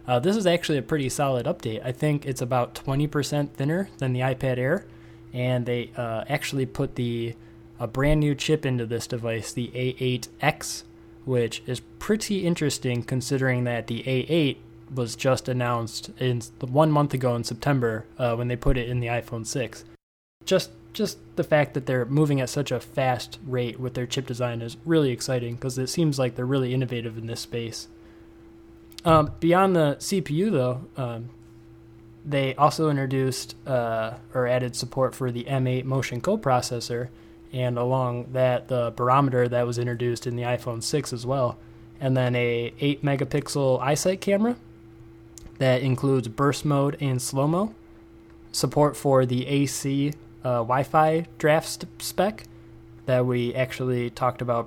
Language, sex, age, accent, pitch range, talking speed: English, male, 20-39, American, 115-140 Hz, 160 wpm